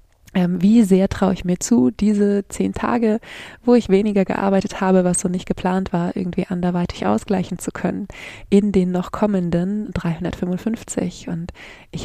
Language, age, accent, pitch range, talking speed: German, 20-39, German, 180-205 Hz, 155 wpm